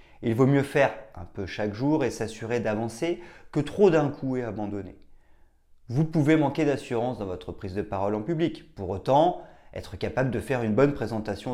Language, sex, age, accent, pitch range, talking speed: French, male, 30-49, French, 95-130 Hz, 190 wpm